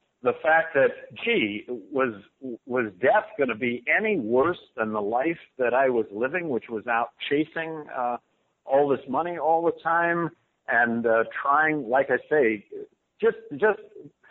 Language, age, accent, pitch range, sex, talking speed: English, 50-69, American, 115-155 Hz, male, 160 wpm